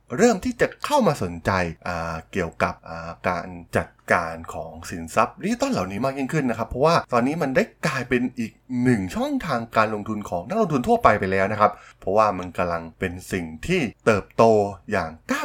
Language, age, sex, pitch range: Thai, 20-39, male, 90-130 Hz